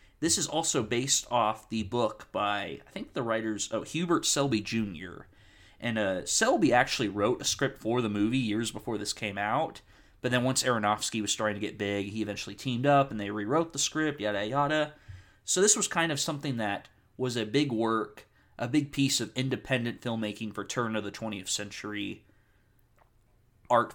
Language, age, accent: English, 20-39, American